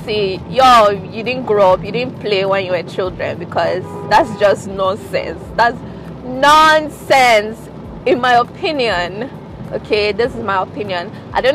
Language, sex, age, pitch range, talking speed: English, female, 20-39, 195-235 Hz, 150 wpm